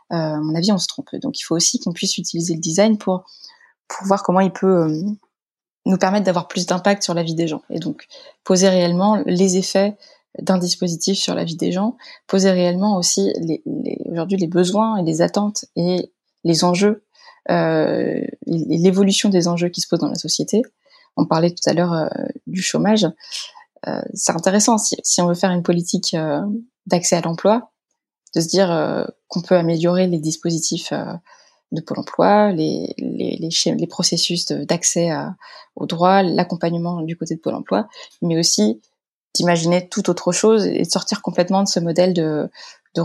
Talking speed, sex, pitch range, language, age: 190 wpm, female, 170-200 Hz, French, 20-39